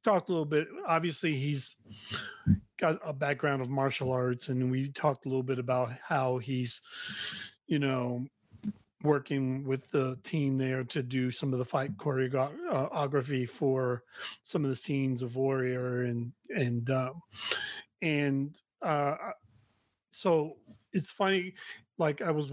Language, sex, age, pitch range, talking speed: English, male, 30-49, 130-165 Hz, 140 wpm